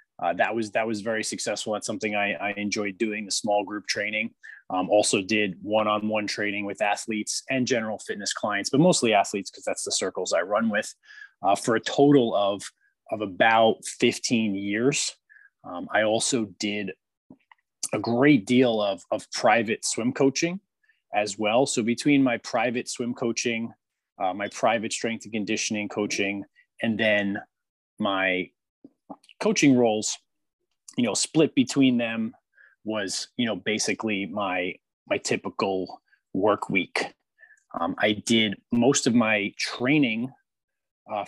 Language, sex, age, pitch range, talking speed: English, male, 20-39, 105-135 Hz, 145 wpm